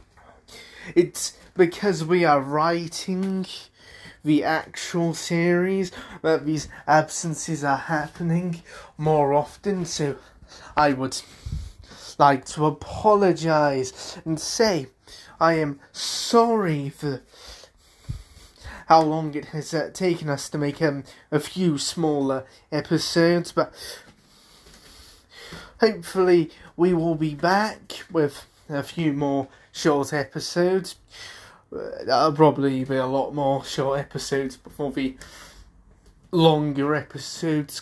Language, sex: English, male